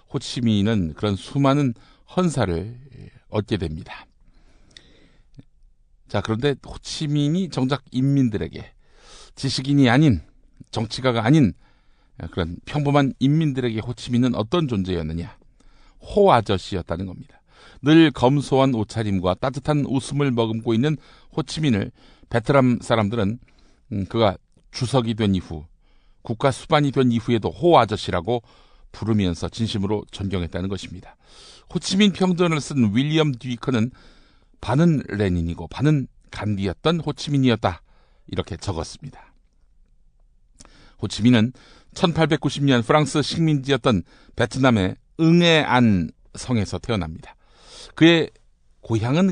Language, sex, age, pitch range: Korean, male, 50-69, 100-145 Hz